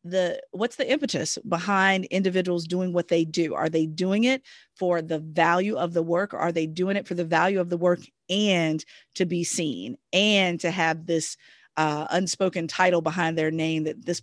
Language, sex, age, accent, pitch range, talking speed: English, female, 40-59, American, 165-205 Hz, 195 wpm